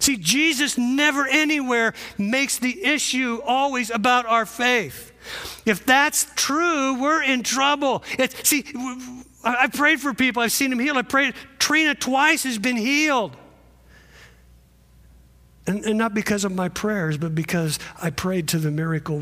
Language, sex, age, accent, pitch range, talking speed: English, male, 50-69, American, 155-230 Hz, 145 wpm